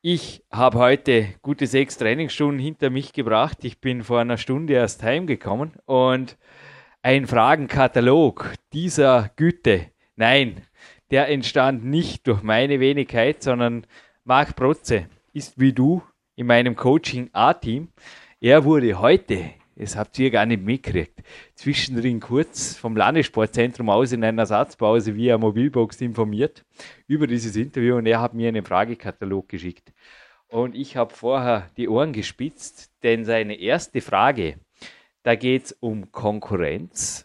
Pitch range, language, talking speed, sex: 115-135 Hz, German, 135 wpm, male